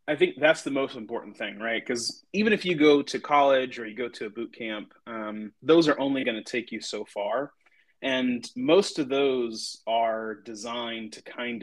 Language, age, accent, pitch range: English, 30-49, American, 115-150 Hz